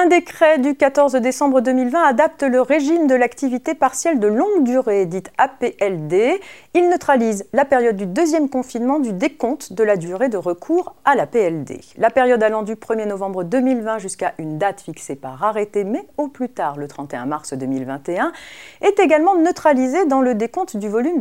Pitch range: 190-310 Hz